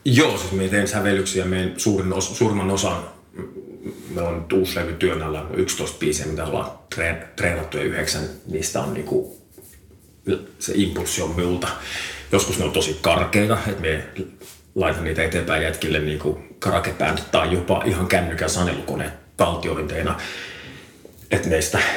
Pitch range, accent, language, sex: 80-95 Hz, native, Finnish, male